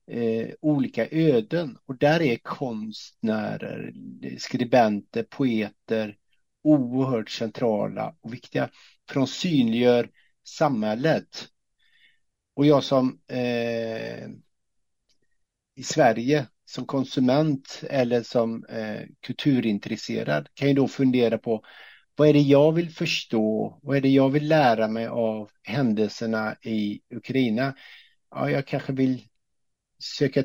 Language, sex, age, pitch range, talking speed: Swedish, male, 50-69, 115-145 Hz, 100 wpm